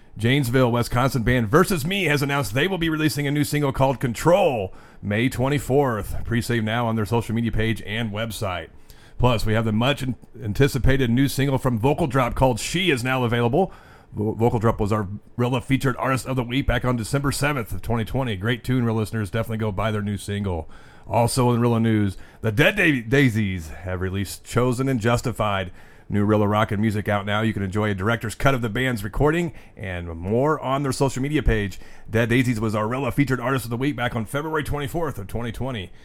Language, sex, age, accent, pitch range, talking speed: English, male, 30-49, American, 110-135 Hz, 205 wpm